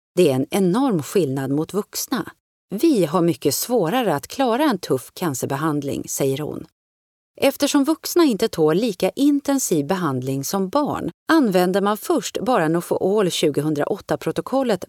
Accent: native